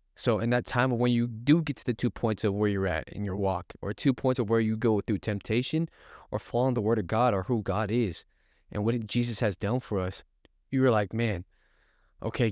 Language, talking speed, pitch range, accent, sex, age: English, 240 wpm, 105-130 Hz, American, male, 20-39